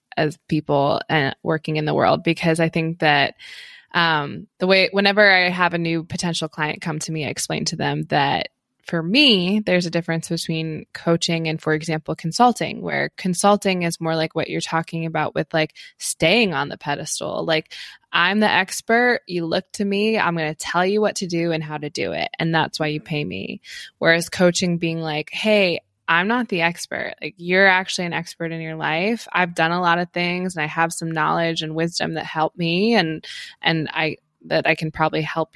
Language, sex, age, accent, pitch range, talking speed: English, female, 20-39, American, 160-205 Hz, 205 wpm